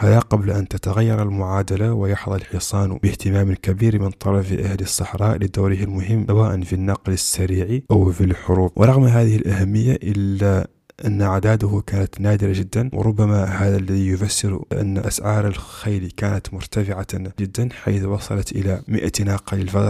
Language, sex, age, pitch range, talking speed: Arabic, male, 20-39, 95-110 Hz, 140 wpm